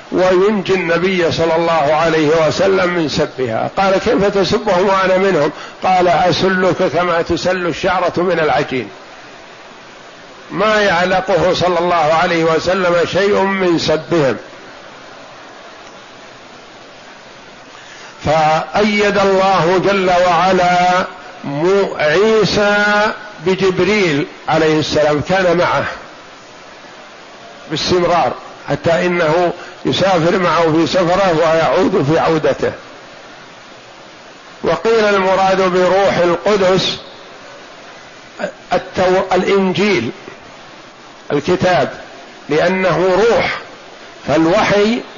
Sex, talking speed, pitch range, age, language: male, 75 wpm, 170-195 Hz, 50-69, Arabic